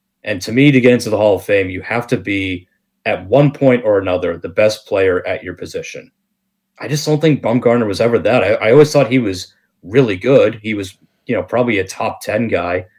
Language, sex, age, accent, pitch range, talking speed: English, male, 30-49, American, 95-135 Hz, 230 wpm